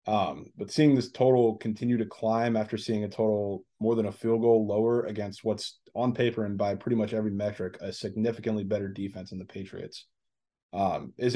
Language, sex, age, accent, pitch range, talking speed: English, male, 20-39, American, 105-120 Hz, 195 wpm